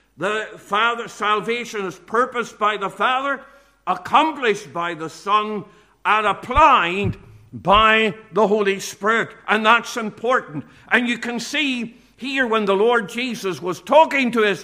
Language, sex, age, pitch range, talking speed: English, male, 50-69, 185-240 Hz, 135 wpm